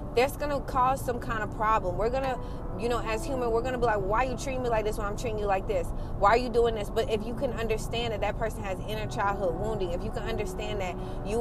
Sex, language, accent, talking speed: female, English, American, 295 wpm